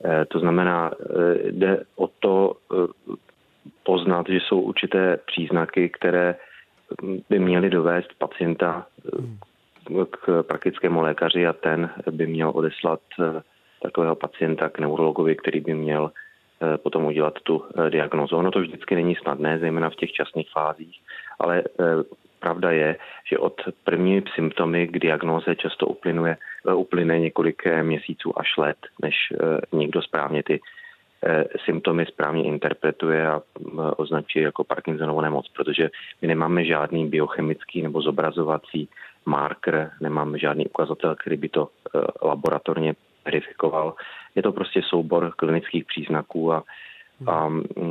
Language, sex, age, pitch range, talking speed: Czech, male, 30-49, 80-85 Hz, 120 wpm